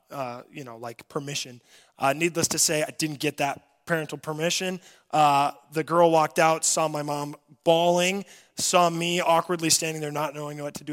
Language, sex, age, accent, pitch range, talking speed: English, male, 20-39, American, 145-175 Hz, 185 wpm